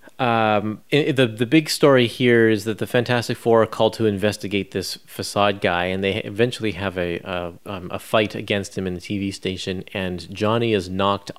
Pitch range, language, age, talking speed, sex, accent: 95-115 Hz, English, 30-49, 195 wpm, male, American